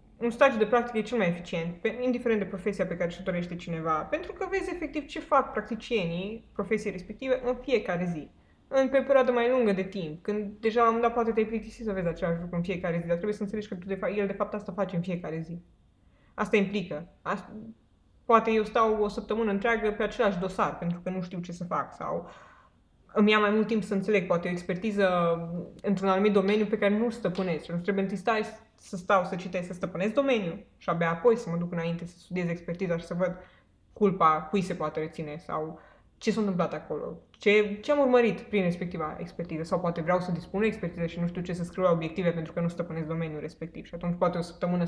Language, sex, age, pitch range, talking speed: Romanian, female, 20-39, 175-215 Hz, 220 wpm